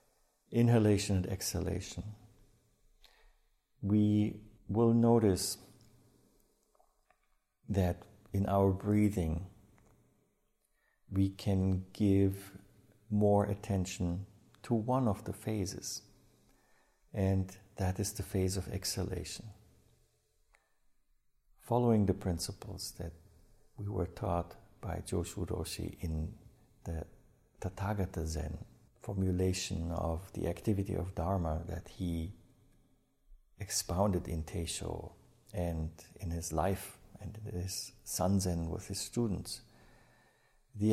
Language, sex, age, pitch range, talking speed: English, male, 50-69, 90-105 Hz, 95 wpm